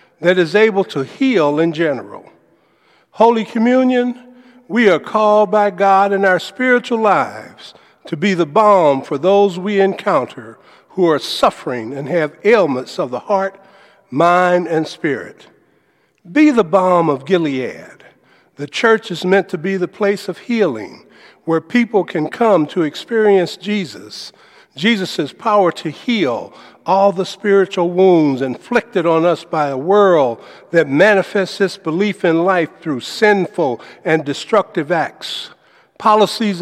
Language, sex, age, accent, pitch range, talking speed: English, male, 60-79, American, 165-215 Hz, 140 wpm